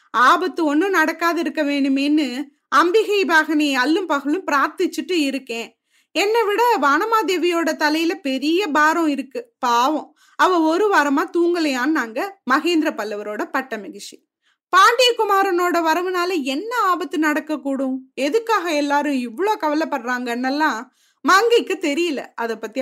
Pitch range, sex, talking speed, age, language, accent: 275-345 Hz, female, 115 wpm, 20-39, Tamil, native